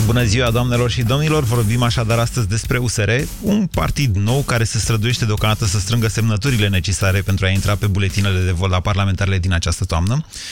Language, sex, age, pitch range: Romanian, male, 30-49, 100-135 Hz